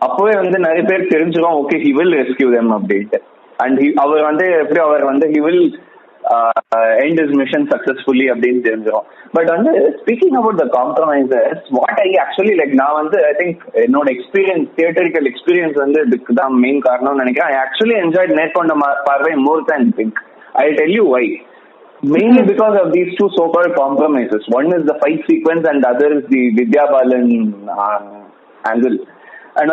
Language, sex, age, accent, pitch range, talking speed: Tamil, male, 20-39, native, 135-210 Hz, 170 wpm